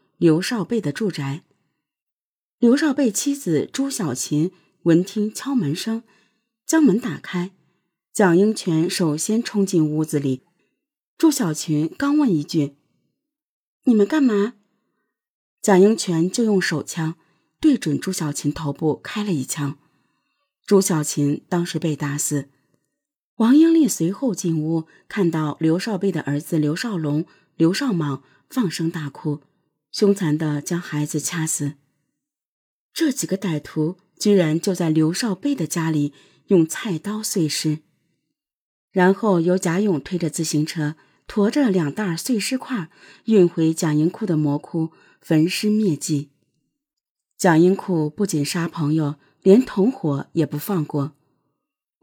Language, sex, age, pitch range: Chinese, female, 30-49, 150-205 Hz